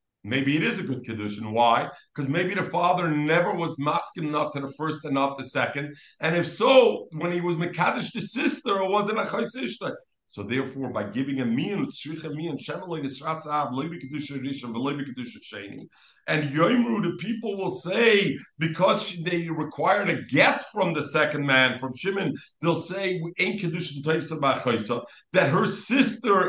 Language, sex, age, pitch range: English, male, 50-69, 135-190 Hz